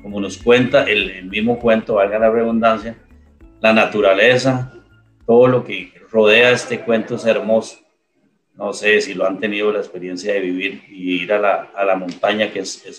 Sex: male